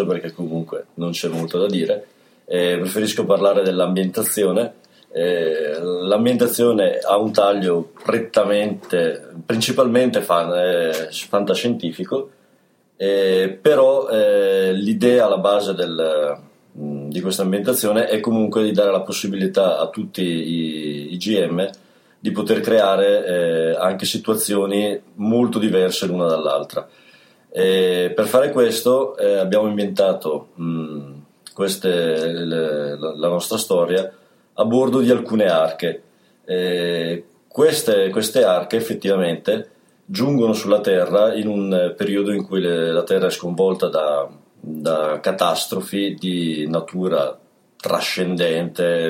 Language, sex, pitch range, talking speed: Italian, male, 85-115 Hz, 110 wpm